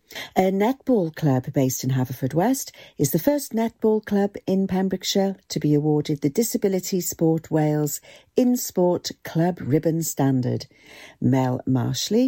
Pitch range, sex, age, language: 140-205 Hz, female, 50-69, English